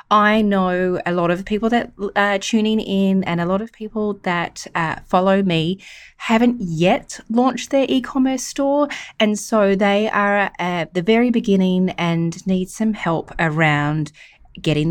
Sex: female